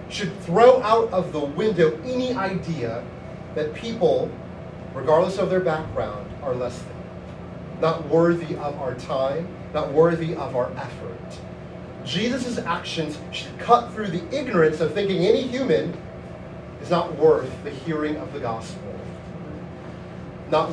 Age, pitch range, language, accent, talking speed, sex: 30-49, 160-215 Hz, English, American, 135 wpm, male